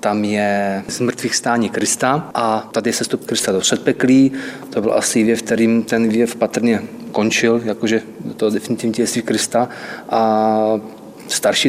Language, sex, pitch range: Czech, male, 110-120 Hz